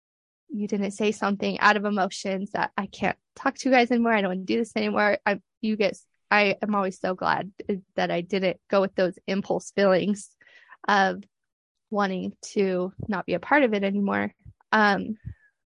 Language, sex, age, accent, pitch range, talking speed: English, female, 20-39, American, 195-220 Hz, 190 wpm